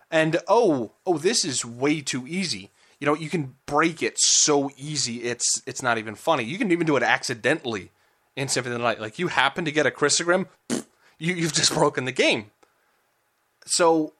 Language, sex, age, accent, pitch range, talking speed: English, male, 30-49, American, 125-155 Hz, 195 wpm